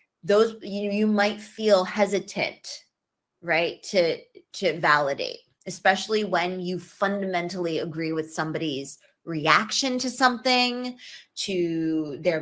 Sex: female